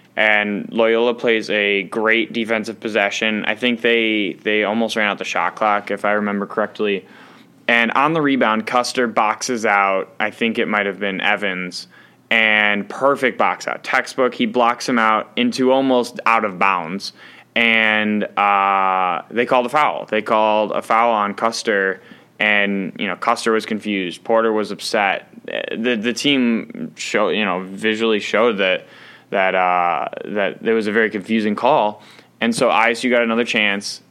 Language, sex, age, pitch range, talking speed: English, male, 10-29, 105-120 Hz, 165 wpm